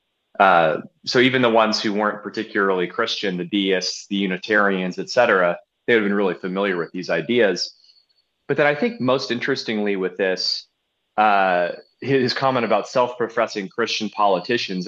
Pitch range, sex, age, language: 100-125 Hz, male, 30-49, English